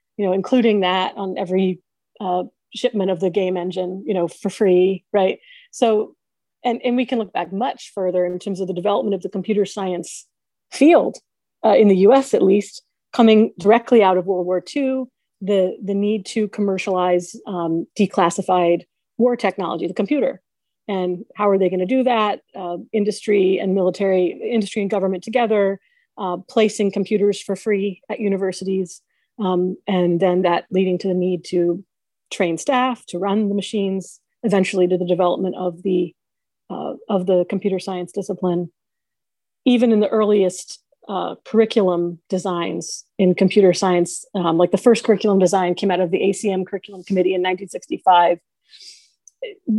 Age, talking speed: 40-59, 160 wpm